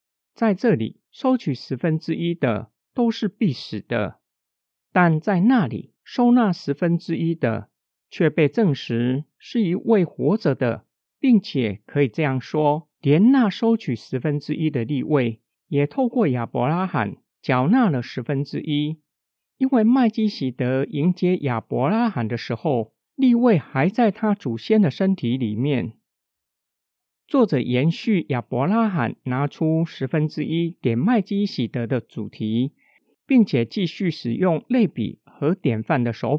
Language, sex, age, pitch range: Chinese, male, 50-69, 130-210 Hz